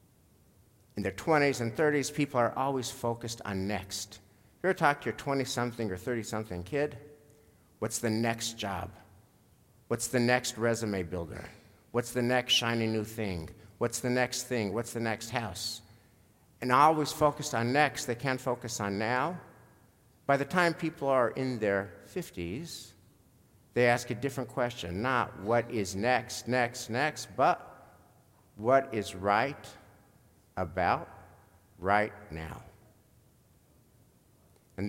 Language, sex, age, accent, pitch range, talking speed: English, male, 50-69, American, 105-140 Hz, 140 wpm